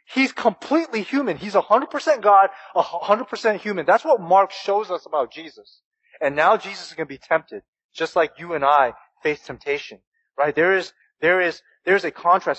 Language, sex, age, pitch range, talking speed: English, male, 20-39, 190-290 Hz, 185 wpm